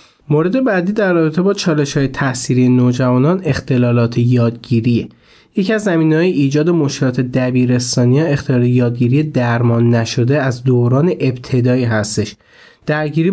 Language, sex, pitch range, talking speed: Persian, male, 130-165 Hz, 115 wpm